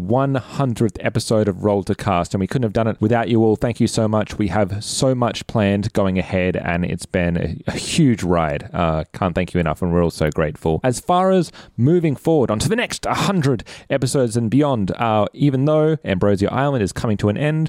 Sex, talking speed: male, 220 wpm